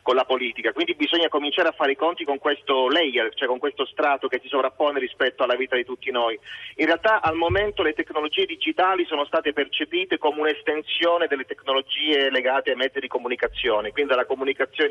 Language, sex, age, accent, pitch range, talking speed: Italian, male, 30-49, native, 140-195 Hz, 195 wpm